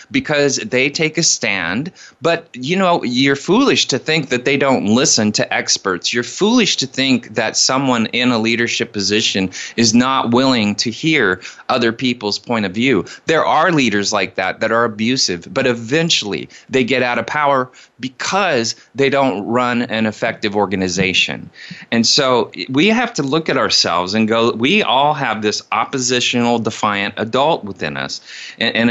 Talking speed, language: 165 wpm, English